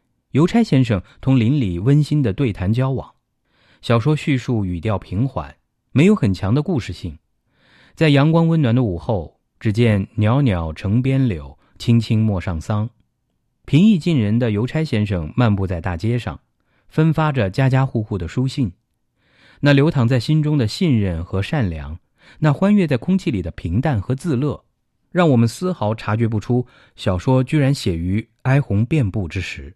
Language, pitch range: English, 95-130 Hz